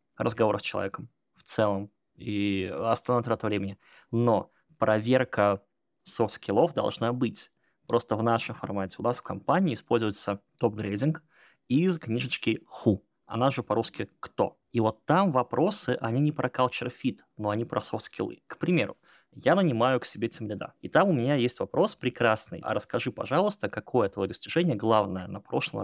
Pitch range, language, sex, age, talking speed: 105-125 Hz, Russian, male, 20-39, 155 wpm